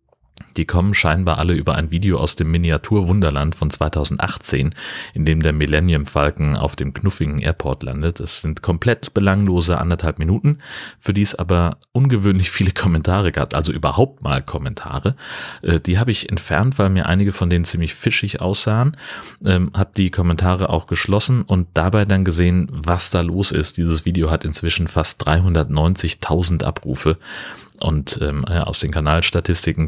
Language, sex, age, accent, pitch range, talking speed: German, male, 30-49, German, 75-95 Hz, 155 wpm